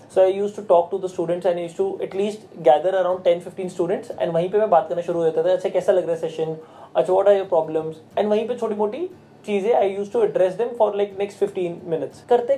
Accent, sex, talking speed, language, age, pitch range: native, male, 260 wpm, Hindi, 20-39, 170-200 Hz